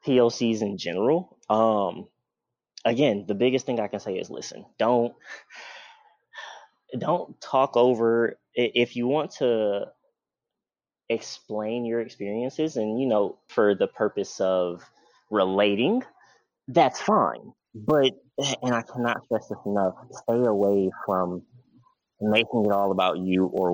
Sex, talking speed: male, 125 wpm